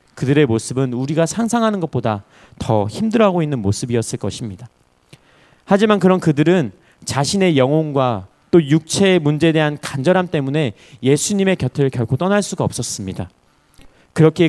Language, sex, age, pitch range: Korean, male, 30-49, 120-175 Hz